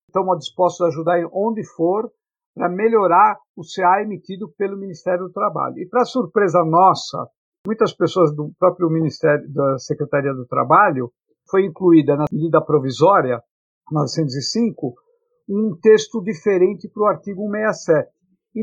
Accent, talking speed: Brazilian, 140 wpm